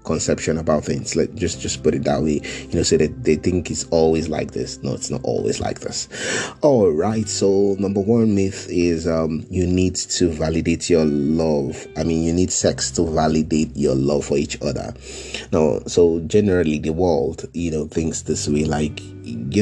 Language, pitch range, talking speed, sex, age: English, 80-100 Hz, 200 wpm, male, 30-49